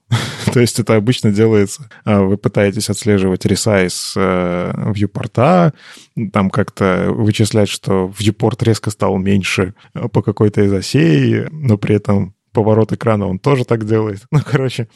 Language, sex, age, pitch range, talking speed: Russian, male, 20-39, 100-115 Hz, 130 wpm